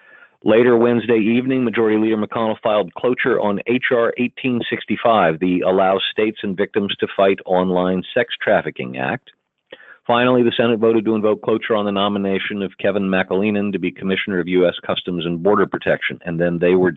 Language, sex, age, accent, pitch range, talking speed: English, male, 50-69, American, 90-110 Hz, 170 wpm